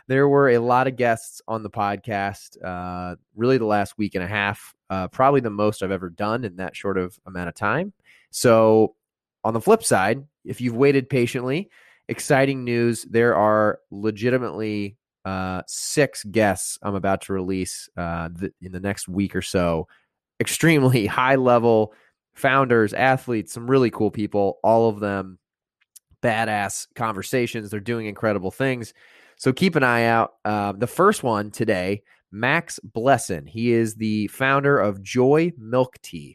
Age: 20-39